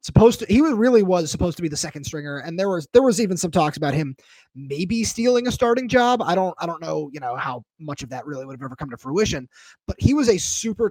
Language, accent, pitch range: English, American, 155-225 Hz